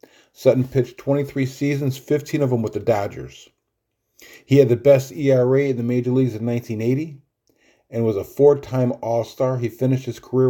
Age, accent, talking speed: 40-59, American, 170 wpm